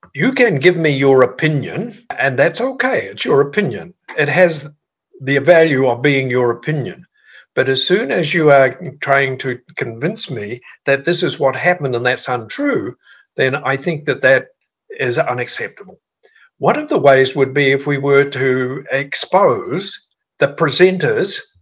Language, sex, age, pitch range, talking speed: English, male, 60-79, 130-160 Hz, 160 wpm